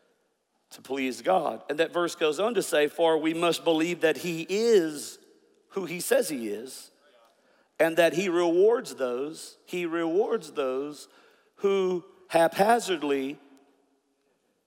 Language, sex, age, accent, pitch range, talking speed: English, male, 50-69, American, 155-220 Hz, 130 wpm